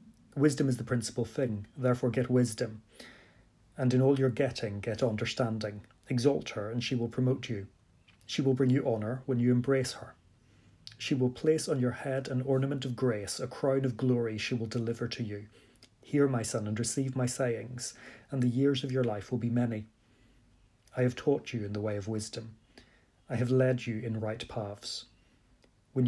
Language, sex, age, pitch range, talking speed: English, male, 30-49, 110-130 Hz, 190 wpm